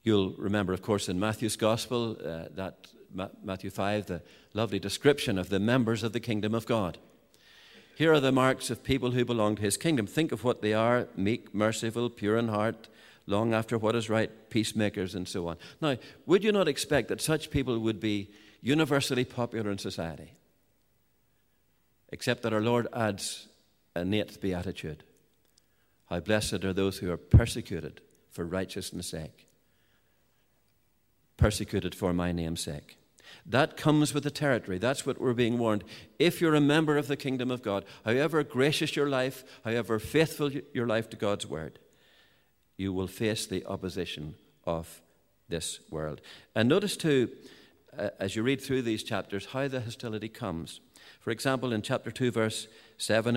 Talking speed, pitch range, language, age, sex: 165 wpm, 95-125 Hz, English, 50-69, male